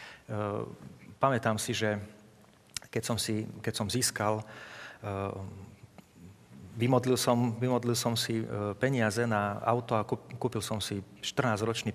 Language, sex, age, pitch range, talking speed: Slovak, male, 40-59, 100-120 Hz, 130 wpm